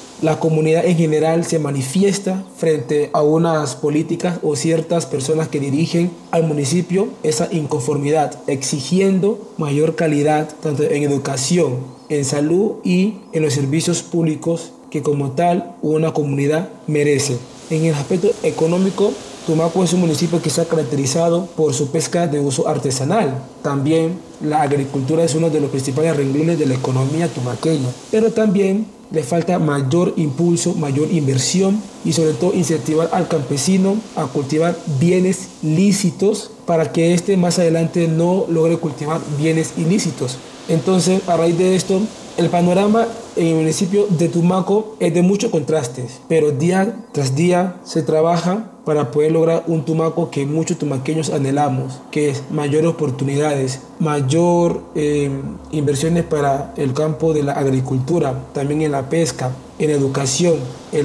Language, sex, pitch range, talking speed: Spanish, male, 145-175 Hz, 145 wpm